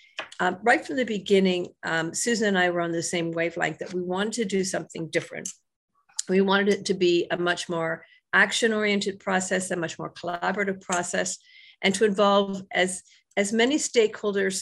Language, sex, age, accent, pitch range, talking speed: English, female, 50-69, American, 175-210 Hz, 175 wpm